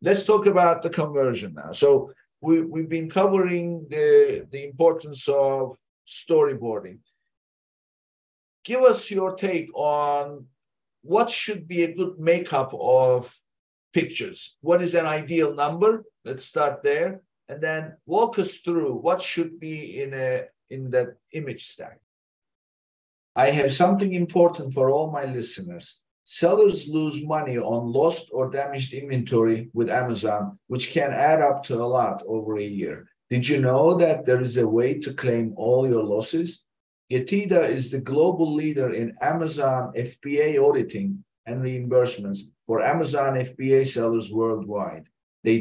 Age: 50-69